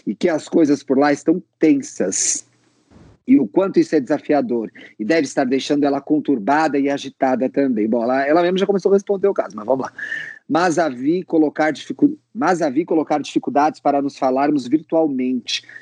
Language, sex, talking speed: Portuguese, male, 190 wpm